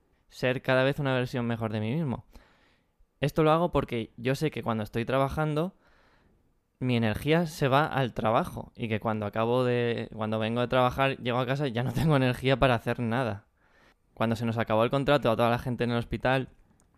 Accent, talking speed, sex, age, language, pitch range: Spanish, 205 wpm, male, 20-39, Spanish, 110-130 Hz